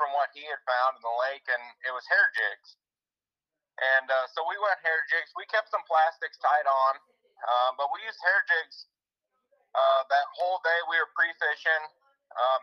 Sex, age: male, 30-49